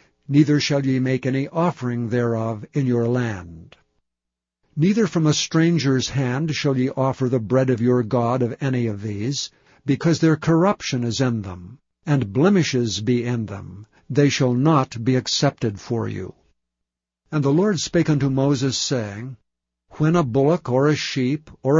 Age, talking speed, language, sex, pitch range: 60-79, 160 wpm, English, male, 120-145 Hz